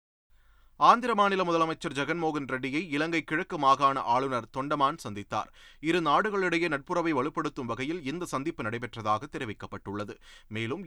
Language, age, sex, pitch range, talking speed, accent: Tamil, 30-49, male, 115-165 Hz, 115 wpm, native